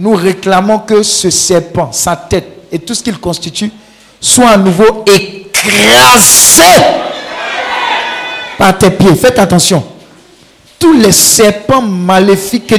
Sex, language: male, French